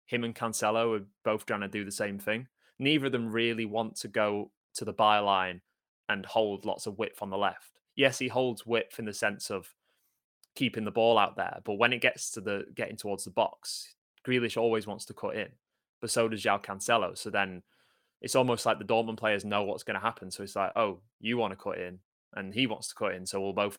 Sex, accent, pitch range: male, British, 100-115 Hz